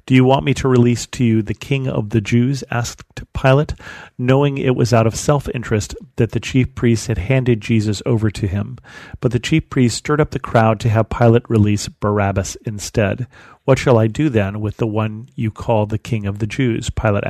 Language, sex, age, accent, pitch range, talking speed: English, male, 40-59, American, 110-130 Hz, 210 wpm